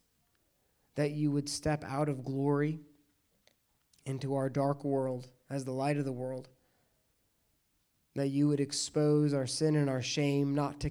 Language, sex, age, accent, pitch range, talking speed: English, male, 20-39, American, 130-145 Hz, 155 wpm